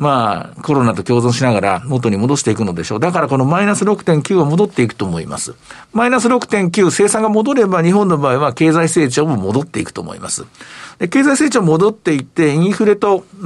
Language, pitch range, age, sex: Japanese, 125-190 Hz, 50-69, male